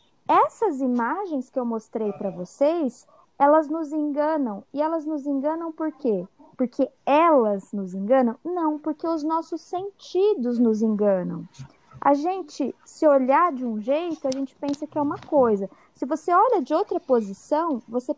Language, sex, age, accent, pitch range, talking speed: Portuguese, female, 20-39, Brazilian, 230-310 Hz, 160 wpm